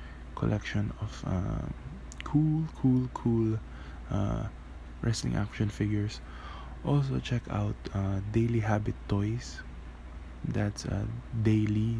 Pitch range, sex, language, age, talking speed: 65-105 Hz, male, English, 20-39, 100 wpm